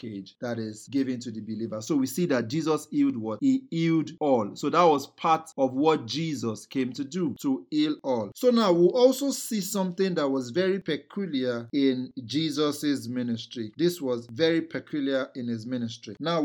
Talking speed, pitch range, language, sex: 185 wpm, 125-190 Hz, English, male